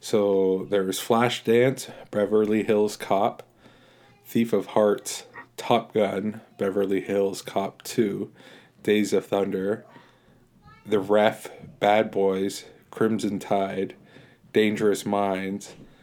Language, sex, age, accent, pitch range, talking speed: English, male, 20-39, American, 95-110 Hz, 95 wpm